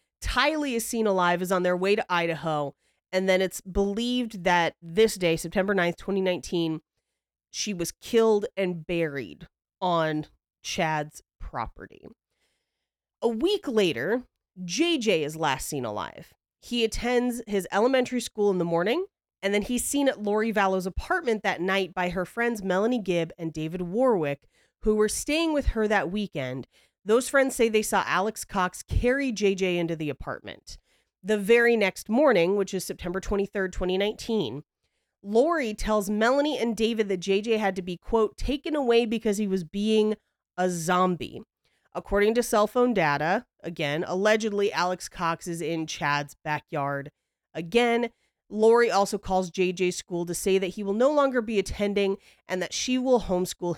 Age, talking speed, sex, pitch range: 30-49, 160 wpm, female, 175-225 Hz